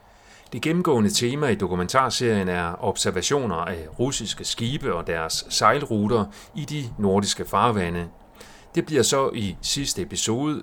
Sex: male